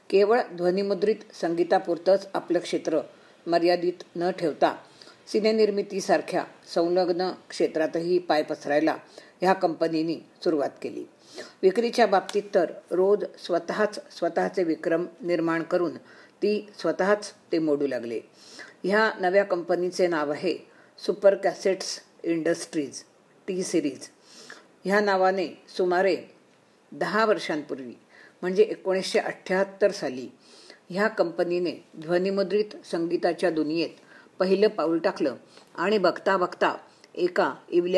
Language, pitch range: Marathi, 170-200 Hz